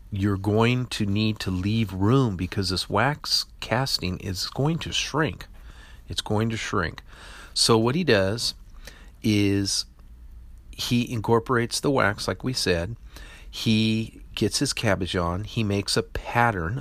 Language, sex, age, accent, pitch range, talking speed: English, male, 40-59, American, 90-115 Hz, 145 wpm